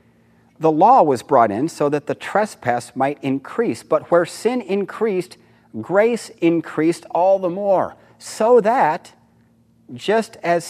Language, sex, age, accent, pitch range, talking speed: English, male, 40-59, American, 110-150 Hz, 135 wpm